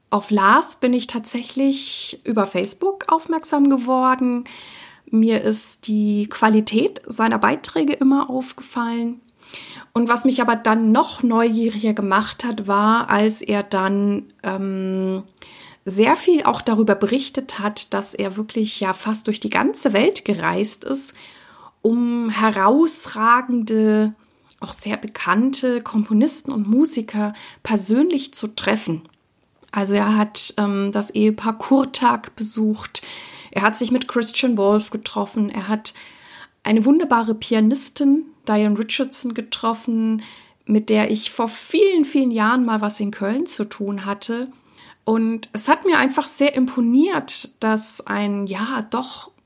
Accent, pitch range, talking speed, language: German, 215-255 Hz, 130 wpm, German